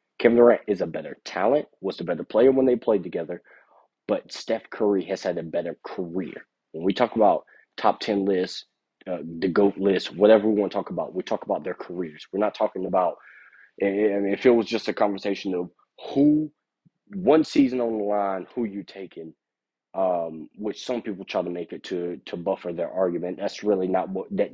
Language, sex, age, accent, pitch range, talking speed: English, male, 30-49, American, 90-115 Hz, 205 wpm